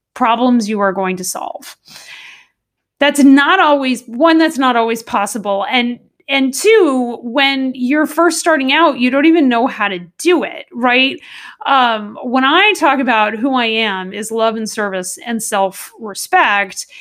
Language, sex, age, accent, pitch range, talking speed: English, female, 30-49, American, 215-295 Hz, 160 wpm